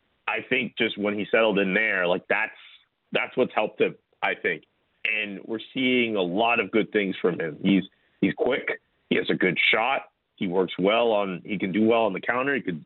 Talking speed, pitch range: 220 wpm, 100-125 Hz